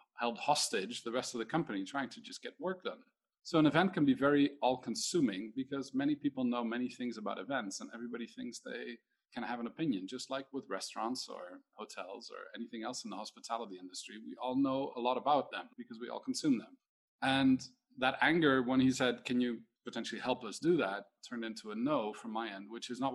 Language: English